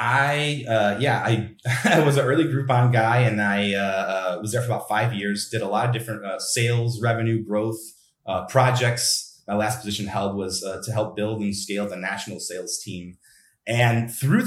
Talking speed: 195 wpm